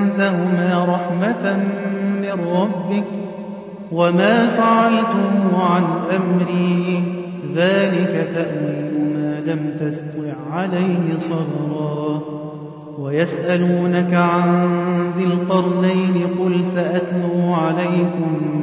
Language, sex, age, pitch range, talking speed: Arabic, male, 30-49, 165-185 Hz, 60 wpm